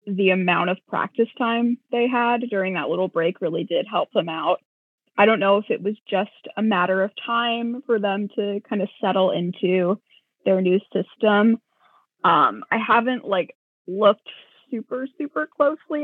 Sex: female